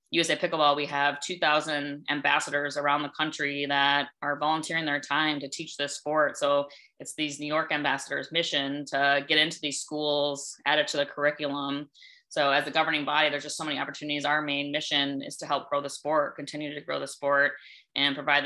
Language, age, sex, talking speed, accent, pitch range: English, 20-39, female, 200 wpm, American, 140-150 Hz